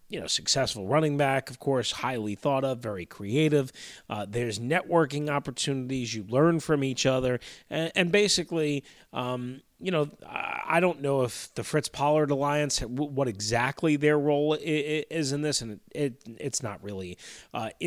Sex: male